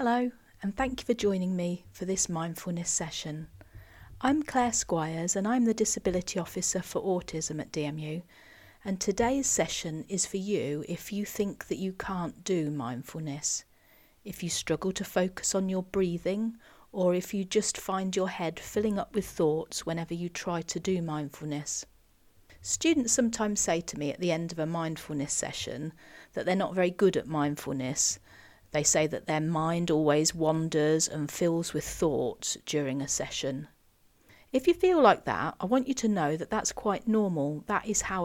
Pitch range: 155-200 Hz